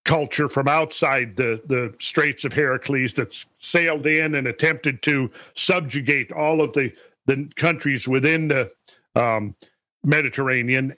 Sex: male